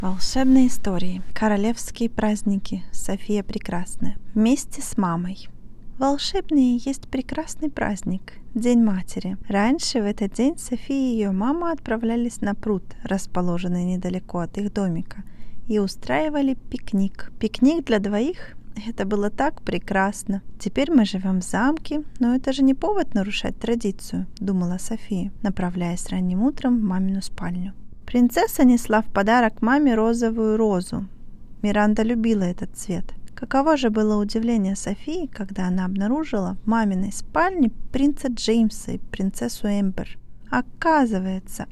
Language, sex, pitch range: Russian, female, 195-255 Hz